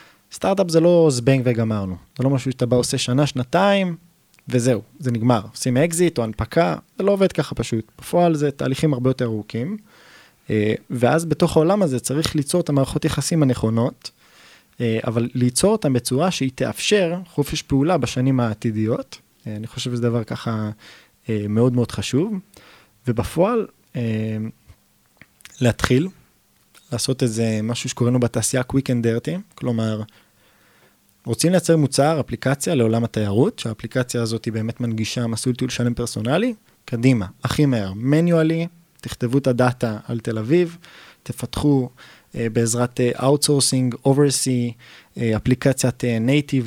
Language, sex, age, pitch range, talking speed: Hebrew, male, 20-39, 120-155 Hz, 135 wpm